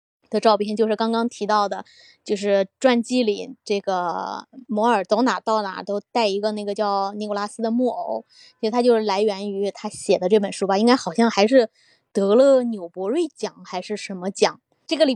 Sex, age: female, 20-39